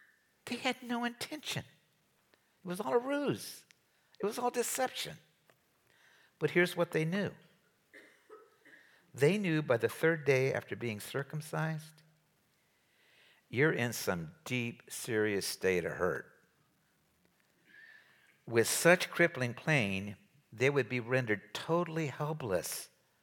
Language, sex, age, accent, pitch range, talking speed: English, male, 60-79, American, 110-160 Hz, 115 wpm